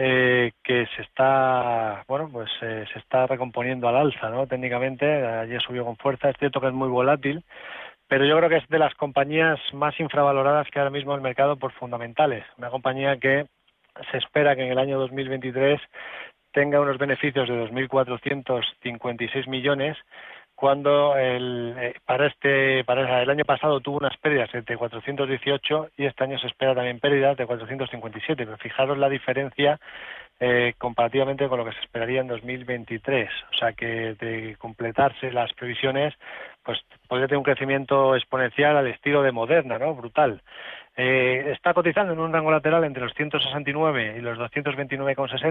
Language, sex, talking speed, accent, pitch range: Spanish, male, 160 wpm, Spanish, 125-145 Hz